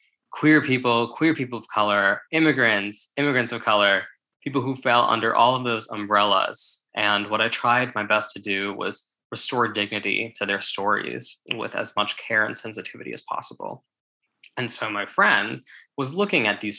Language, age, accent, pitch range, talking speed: English, 20-39, American, 100-125 Hz, 170 wpm